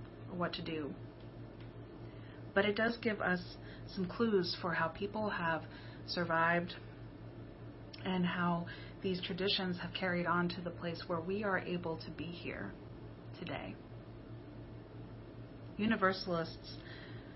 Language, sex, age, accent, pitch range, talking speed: English, female, 30-49, American, 170-200 Hz, 120 wpm